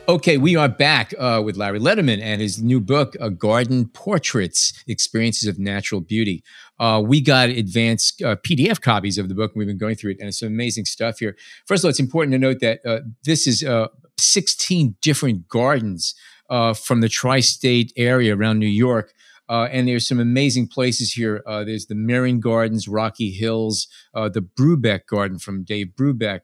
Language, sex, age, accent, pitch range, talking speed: English, male, 50-69, American, 105-130 Hz, 190 wpm